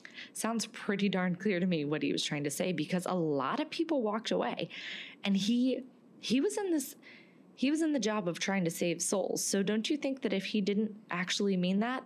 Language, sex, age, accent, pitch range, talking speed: English, female, 20-39, American, 180-245 Hz, 230 wpm